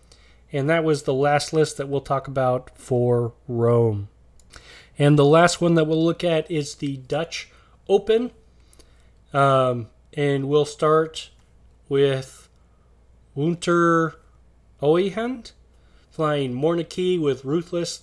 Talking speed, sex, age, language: 115 wpm, male, 30-49, English